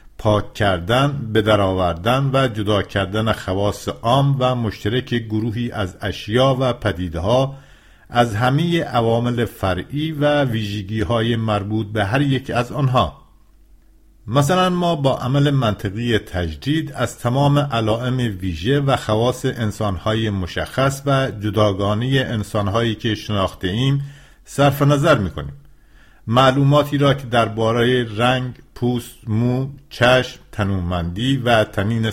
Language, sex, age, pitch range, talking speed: English, male, 50-69, 105-135 Hz, 115 wpm